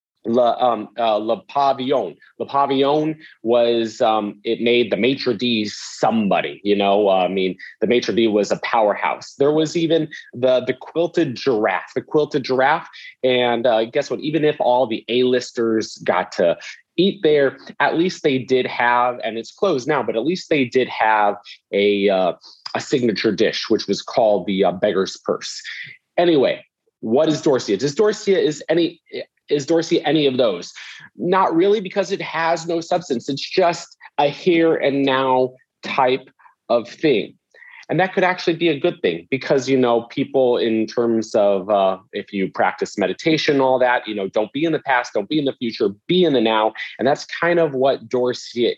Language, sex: English, male